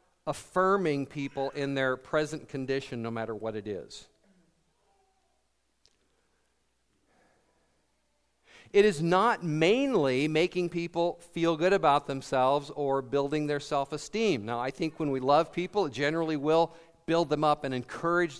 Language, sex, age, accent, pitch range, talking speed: English, male, 50-69, American, 130-175 Hz, 130 wpm